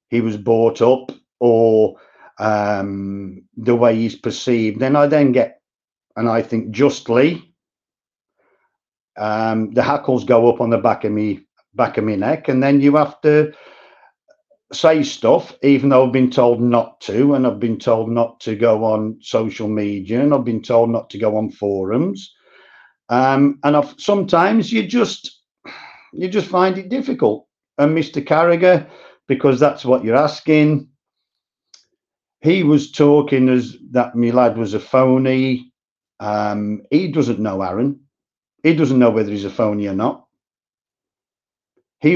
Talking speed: 155 wpm